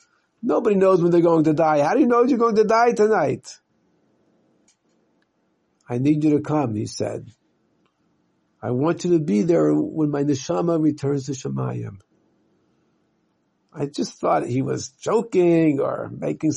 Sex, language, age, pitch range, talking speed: male, English, 50-69, 140-195 Hz, 155 wpm